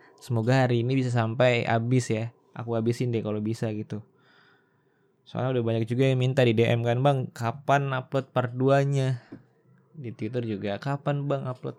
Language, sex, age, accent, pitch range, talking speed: Indonesian, male, 20-39, native, 115-145 Hz, 170 wpm